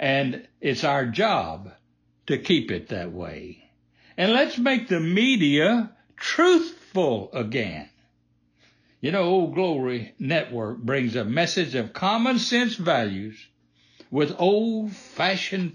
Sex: male